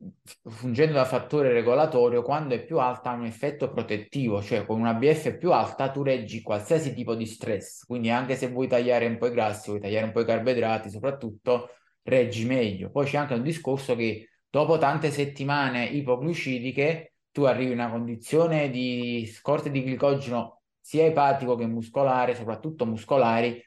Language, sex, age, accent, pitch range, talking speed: Italian, male, 20-39, native, 120-145 Hz, 170 wpm